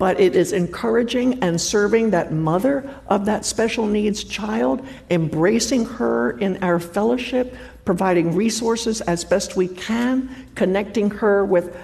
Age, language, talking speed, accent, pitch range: 60-79, English, 135 wpm, American, 165-245 Hz